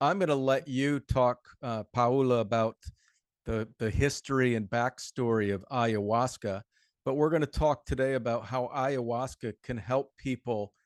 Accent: American